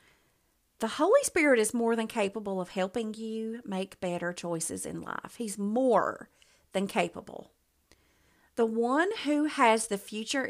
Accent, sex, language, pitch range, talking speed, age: American, female, English, 180-245 Hz, 145 wpm, 40-59